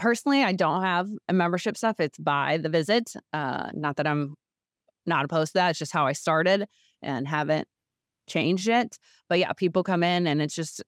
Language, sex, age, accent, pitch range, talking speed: English, female, 20-39, American, 155-195 Hz, 200 wpm